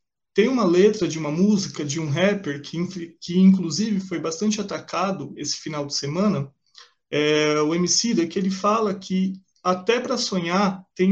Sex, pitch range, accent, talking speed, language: male, 165-205 Hz, Brazilian, 160 wpm, Portuguese